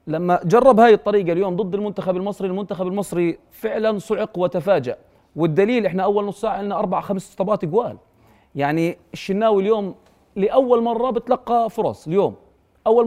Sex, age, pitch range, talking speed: male, 30-49, 170-215 Hz, 145 wpm